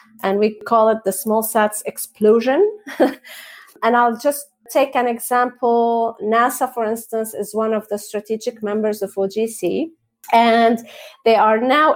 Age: 30-49